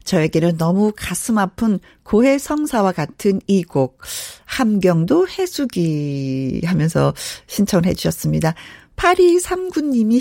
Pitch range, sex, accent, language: 170-255 Hz, female, native, Korean